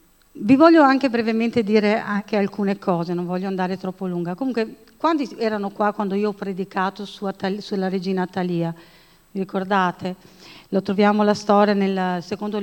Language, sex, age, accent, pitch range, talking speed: Italian, female, 50-69, native, 195-250 Hz, 160 wpm